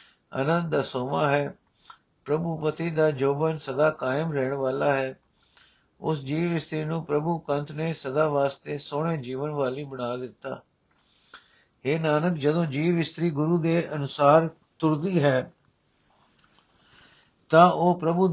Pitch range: 140-170 Hz